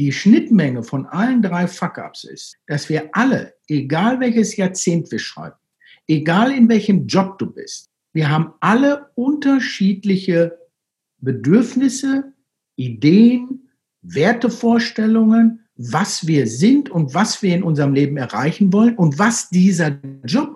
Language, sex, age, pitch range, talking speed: German, male, 60-79, 170-230 Hz, 125 wpm